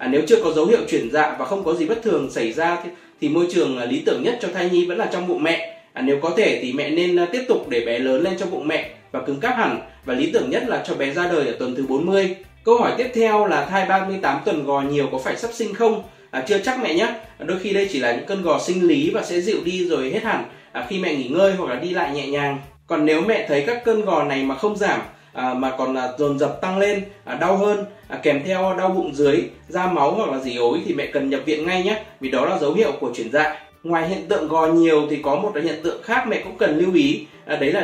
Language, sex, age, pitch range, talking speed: Vietnamese, male, 20-39, 145-205 Hz, 285 wpm